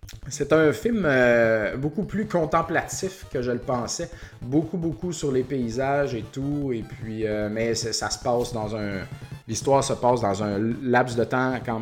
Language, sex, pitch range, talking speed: French, male, 115-140 Hz, 185 wpm